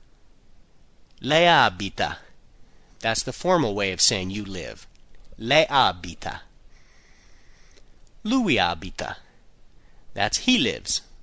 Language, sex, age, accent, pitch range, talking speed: Italian, male, 30-49, American, 100-170 Hz, 90 wpm